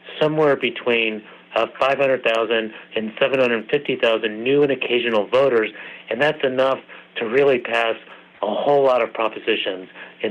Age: 60-79